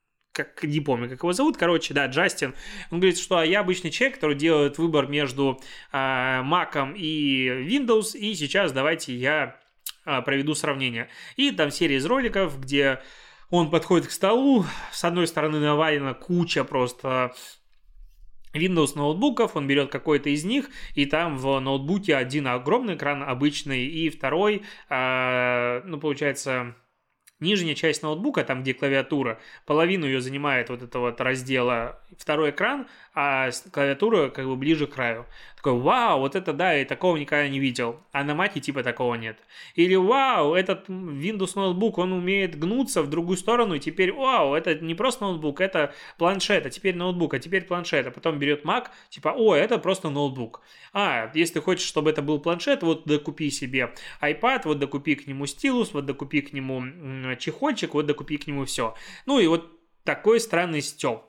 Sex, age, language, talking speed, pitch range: male, 20-39, Russian, 165 wpm, 135-180 Hz